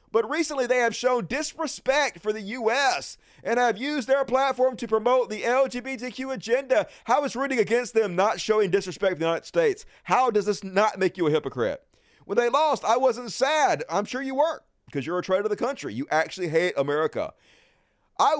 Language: English